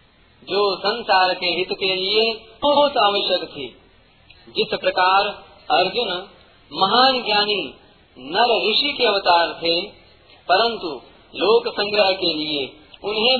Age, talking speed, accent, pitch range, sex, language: 40-59, 110 wpm, native, 170-210 Hz, male, Hindi